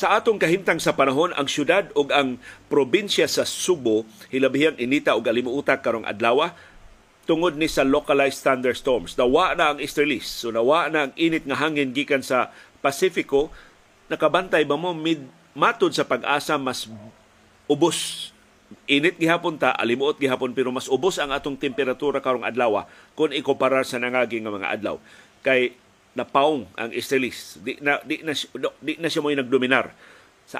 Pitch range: 125-150 Hz